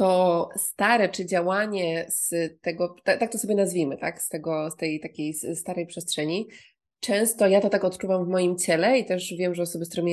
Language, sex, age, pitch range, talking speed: Polish, female, 20-39, 165-195 Hz, 195 wpm